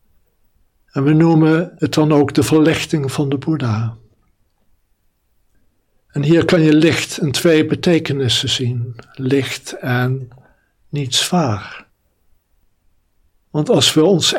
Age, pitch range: 60-79, 110-150 Hz